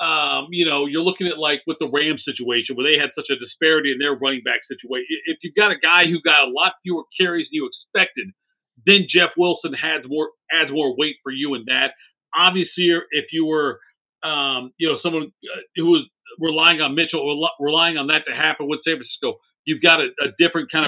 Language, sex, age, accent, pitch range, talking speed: English, male, 50-69, American, 155-205 Hz, 220 wpm